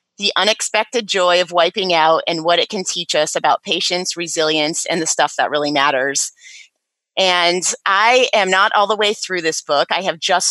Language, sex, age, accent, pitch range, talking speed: English, female, 30-49, American, 165-195 Hz, 195 wpm